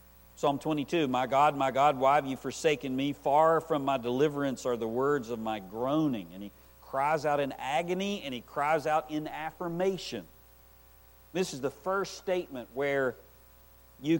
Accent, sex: American, male